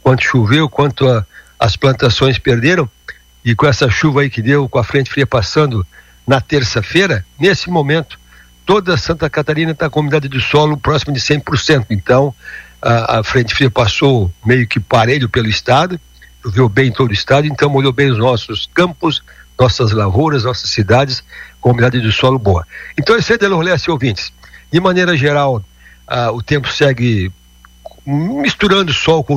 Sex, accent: male, Brazilian